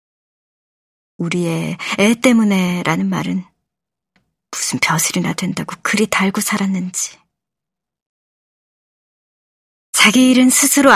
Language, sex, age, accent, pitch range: Korean, male, 40-59, native, 185-255 Hz